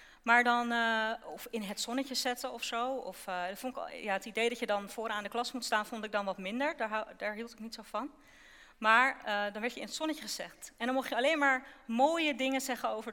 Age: 40-59